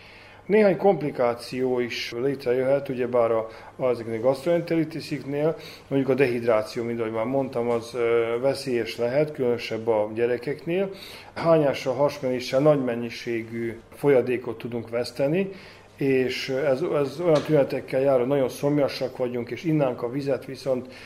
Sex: male